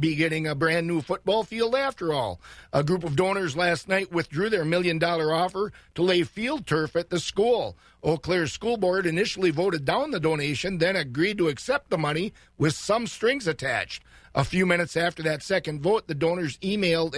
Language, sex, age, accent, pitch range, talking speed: English, male, 50-69, American, 155-190 Hz, 195 wpm